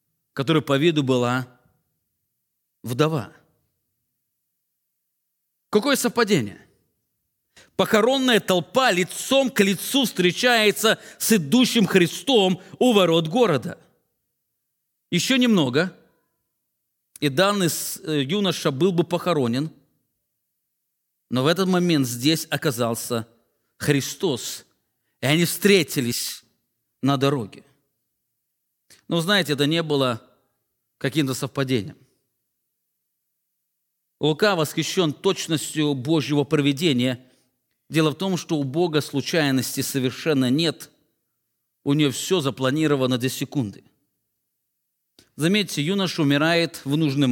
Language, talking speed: English, 90 wpm